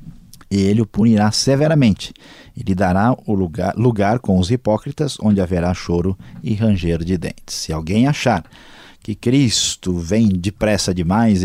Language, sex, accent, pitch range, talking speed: Portuguese, male, Brazilian, 90-115 Hz, 140 wpm